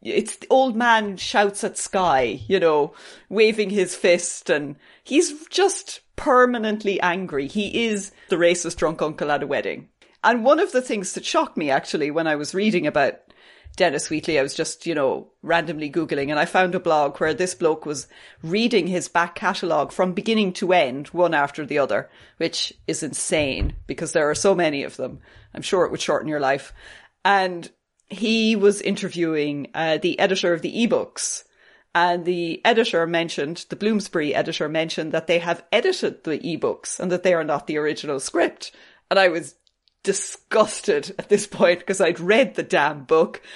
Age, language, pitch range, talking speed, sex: 30-49, English, 170-230 Hz, 180 wpm, female